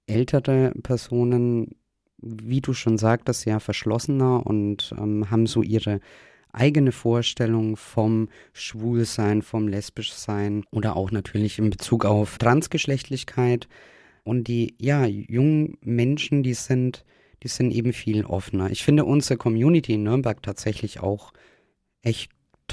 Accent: German